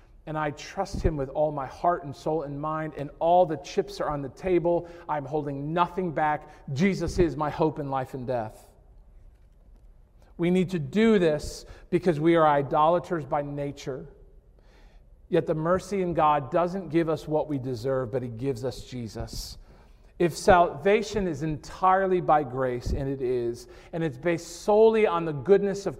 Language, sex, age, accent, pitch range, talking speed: English, male, 40-59, American, 145-185 Hz, 175 wpm